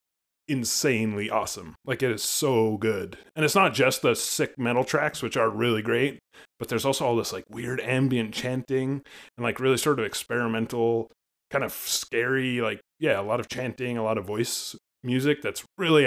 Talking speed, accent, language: 185 wpm, American, English